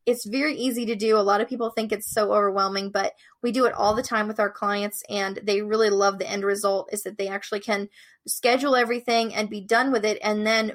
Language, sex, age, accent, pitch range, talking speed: English, female, 20-39, American, 205-240 Hz, 245 wpm